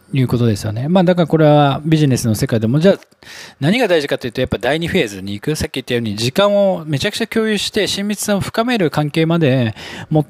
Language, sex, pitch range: Japanese, male, 120-180 Hz